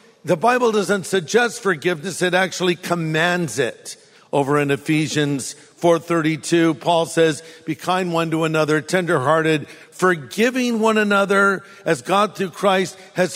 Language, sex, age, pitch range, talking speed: English, male, 50-69, 165-205 Hz, 130 wpm